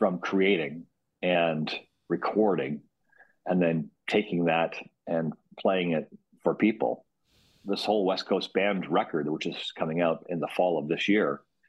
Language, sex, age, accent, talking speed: English, male, 40-59, American, 150 wpm